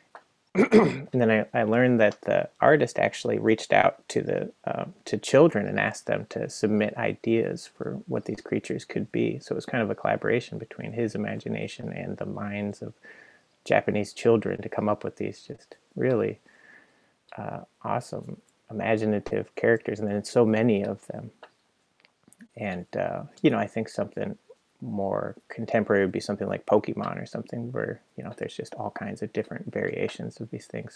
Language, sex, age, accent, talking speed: English, male, 30-49, American, 175 wpm